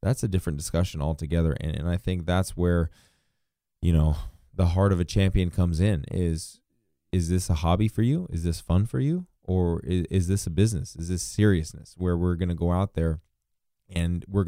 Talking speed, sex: 205 wpm, male